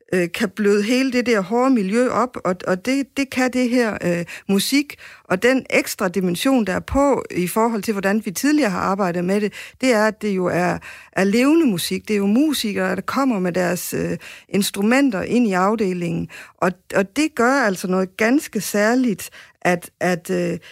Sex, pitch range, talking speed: female, 180-230 Hz, 185 wpm